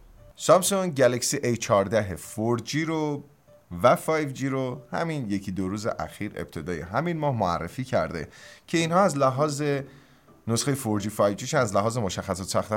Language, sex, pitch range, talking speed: Persian, male, 95-145 Hz, 135 wpm